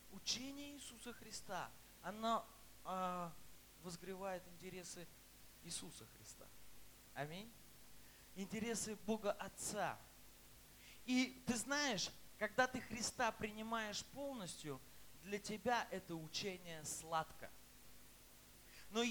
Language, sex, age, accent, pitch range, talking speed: Russian, male, 20-39, native, 180-260 Hz, 85 wpm